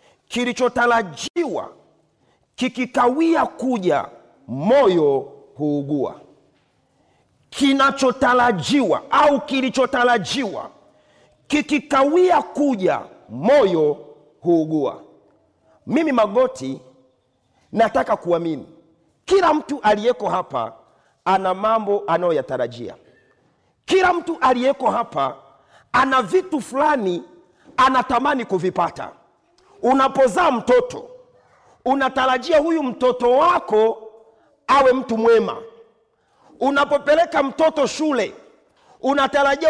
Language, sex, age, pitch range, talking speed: Swahili, male, 40-59, 225-295 Hz, 70 wpm